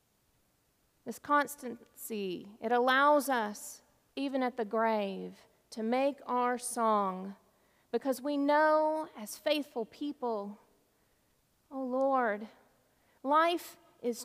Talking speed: 95 wpm